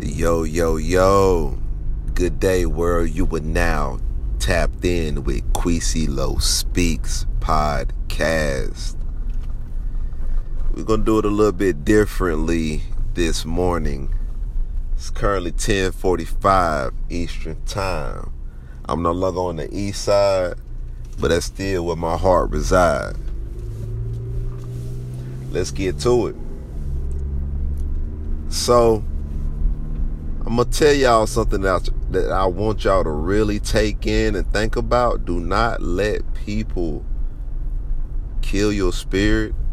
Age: 40-59